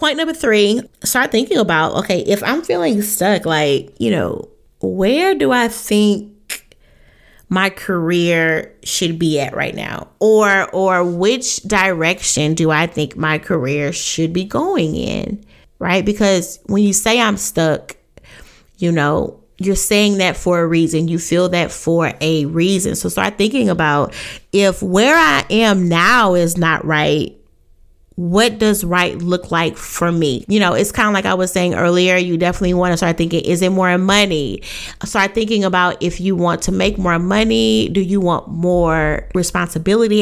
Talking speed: 170 wpm